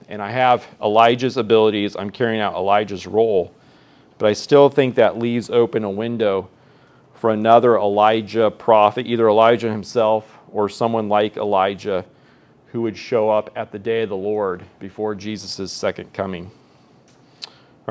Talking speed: 150 wpm